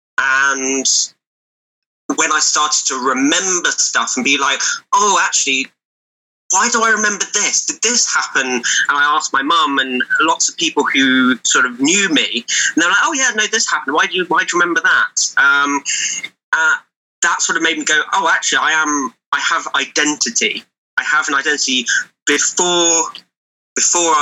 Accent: British